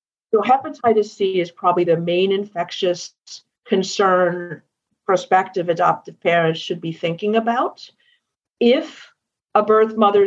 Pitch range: 175-215 Hz